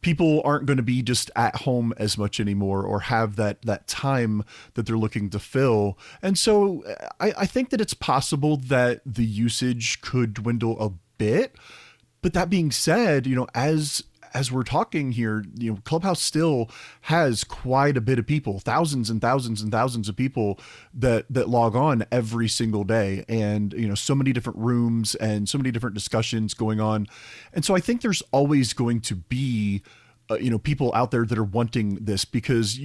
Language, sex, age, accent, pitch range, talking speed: English, male, 30-49, American, 110-140 Hz, 190 wpm